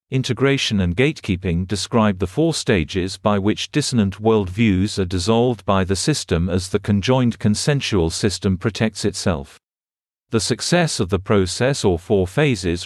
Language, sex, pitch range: English, male, 95-120 Hz